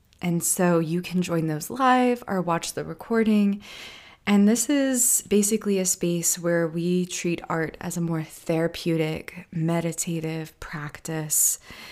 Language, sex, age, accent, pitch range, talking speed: English, female, 20-39, American, 160-200 Hz, 135 wpm